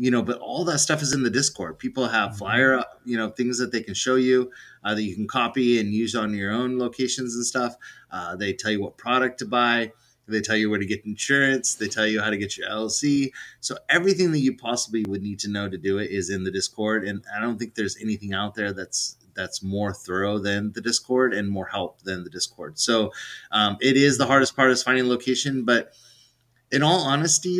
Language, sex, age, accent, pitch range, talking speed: English, male, 30-49, American, 105-130 Hz, 235 wpm